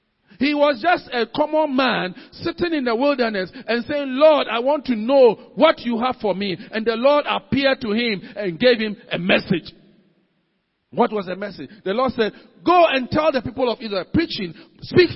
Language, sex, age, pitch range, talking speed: English, male, 50-69, 195-290 Hz, 195 wpm